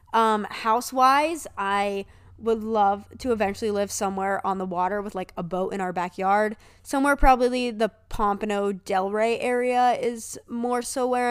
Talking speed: 155 wpm